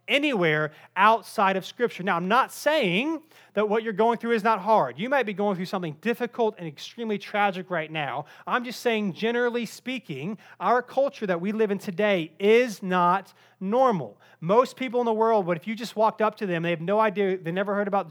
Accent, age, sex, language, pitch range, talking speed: American, 30-49, male, English, 185-235 Hz, 210 wpm